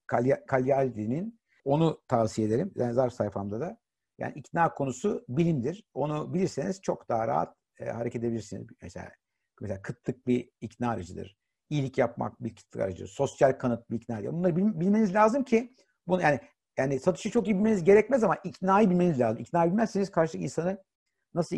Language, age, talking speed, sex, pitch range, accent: Turkish, 60-79, 160 wpm, male, 125-175 Hz, native